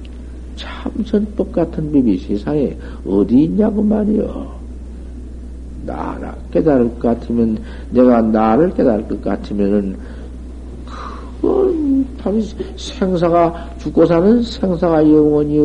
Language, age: Korean, 50-69